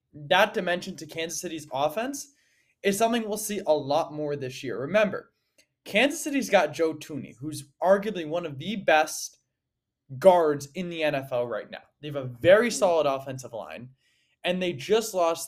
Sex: male